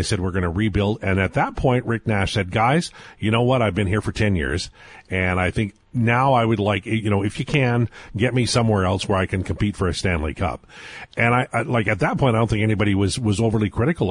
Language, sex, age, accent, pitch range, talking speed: English, male, 50-69, American, 95-125 Hz, 265 wpm